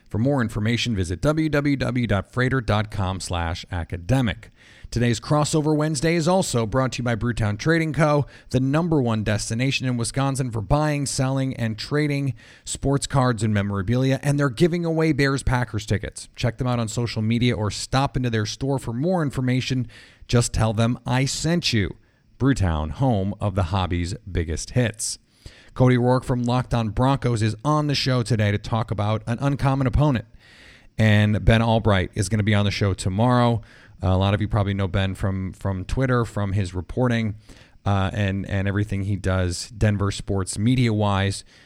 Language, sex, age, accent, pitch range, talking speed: English, male, 30-49, American, 100-130 Hz, 170 wpm